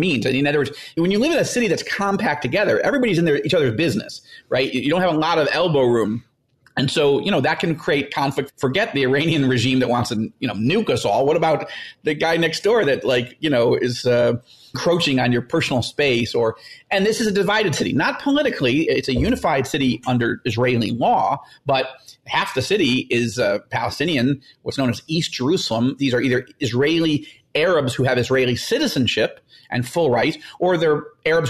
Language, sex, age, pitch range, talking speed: English, male, 40-59, 125-170 Hz, 205 wpm